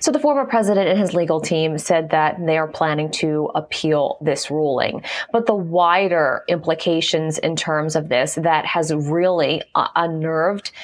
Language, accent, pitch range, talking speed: English, American, 170-220 Hz, 165 wpm